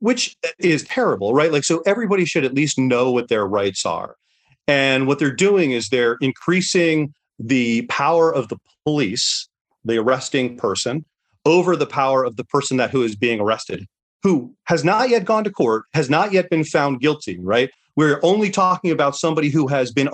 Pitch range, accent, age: 130-175 Hz, American, 30-49